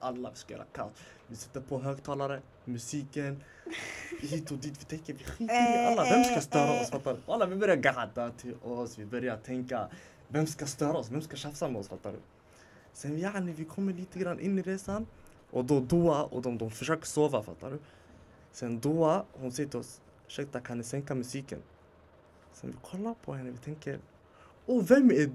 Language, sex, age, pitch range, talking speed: Swedish, male, 20-39, 115-160 Hz, 190 wpm